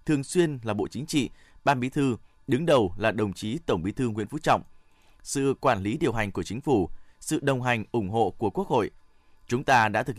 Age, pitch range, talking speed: 20-39, 105-140 Hz, 235 wpm